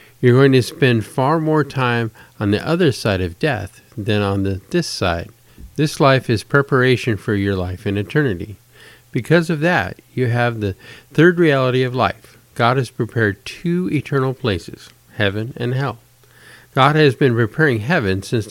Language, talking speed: English, 170 wpm